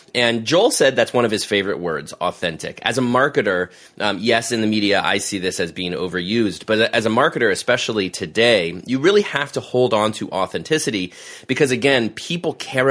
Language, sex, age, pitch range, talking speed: English, male, 30-49, 100-130 Hz, 195 wpm